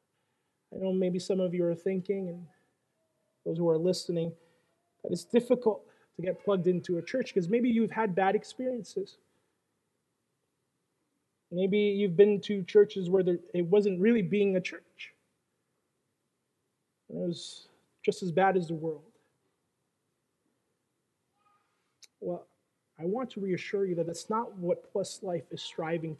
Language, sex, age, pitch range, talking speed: English, male, 30-49, 165-195 Hz, 140 wpm